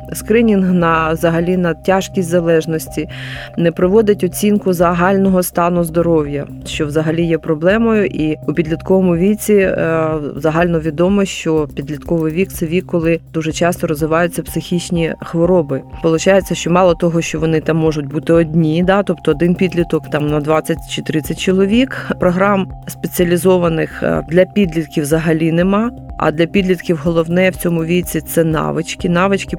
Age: 30-49